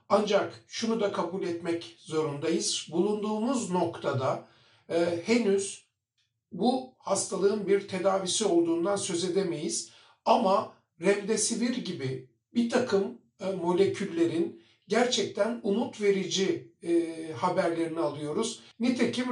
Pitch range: 170-225 Hz